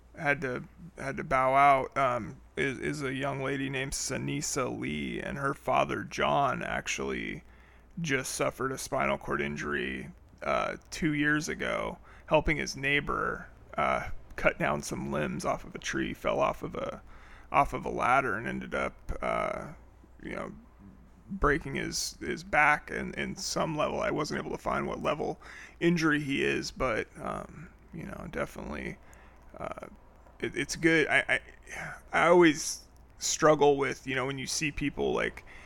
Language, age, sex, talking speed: English, 30-49, male, 160 wpm